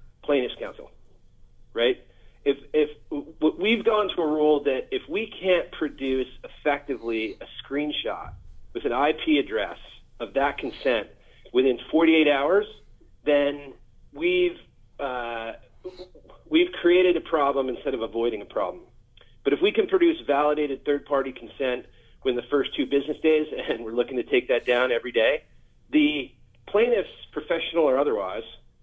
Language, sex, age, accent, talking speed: English, male, 40-59, American, 140 wpm